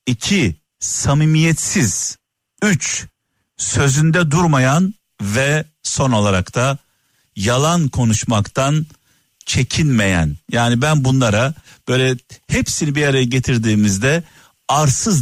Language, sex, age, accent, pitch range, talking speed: Turkish, male, 50-69, native, 110-155 Hz, 85 wpm